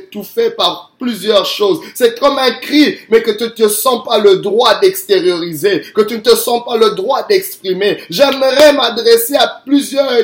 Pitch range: 205-280 Hz